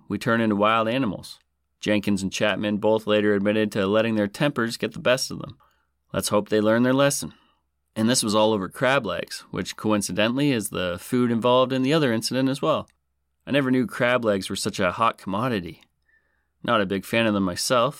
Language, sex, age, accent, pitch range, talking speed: English, male, 30-49, American, 95-120 Hz, 205 wpm